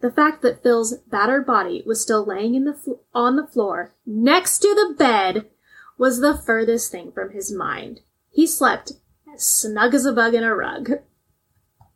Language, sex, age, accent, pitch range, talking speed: English, female, 20-39, American, 220-265 Hz, 180 wpm